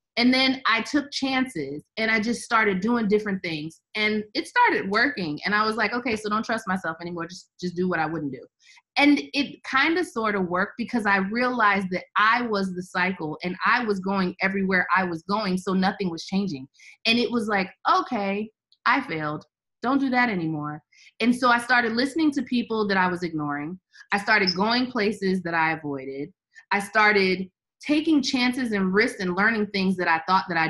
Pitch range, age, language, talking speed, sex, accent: 180-255 Hz, 30-49, English, 200 wpm, female, American